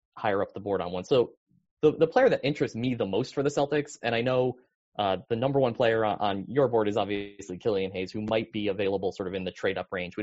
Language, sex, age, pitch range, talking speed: English, male, 20-39, 110-145 Hz, 265 wpm